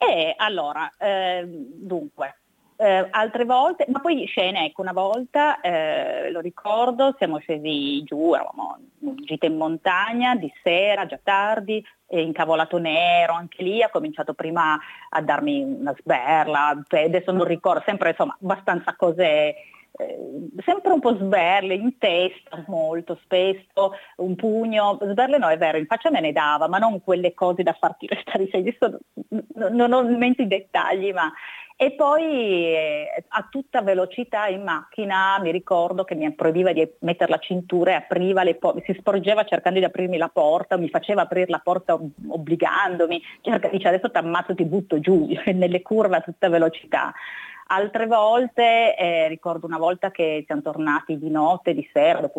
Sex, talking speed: female, 160 wpm